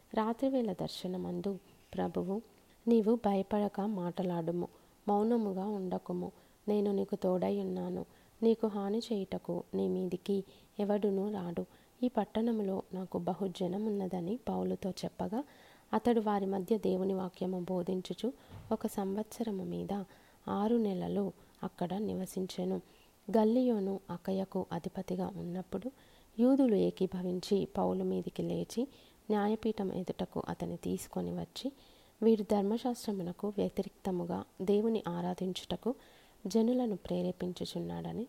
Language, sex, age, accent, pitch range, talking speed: Telugu, female, 30-49, native, 180-215 Hz, 95 wpm